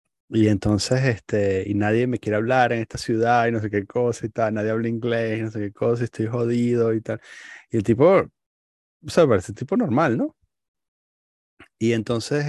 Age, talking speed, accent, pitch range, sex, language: 30-49, 200 wpm, Argentinian, 100-125 Hz, male, Spanish